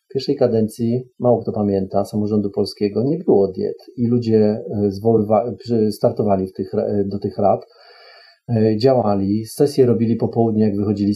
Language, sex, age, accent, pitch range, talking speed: Polish, male, 40-59, native, 105-125 Hz, 145 wpm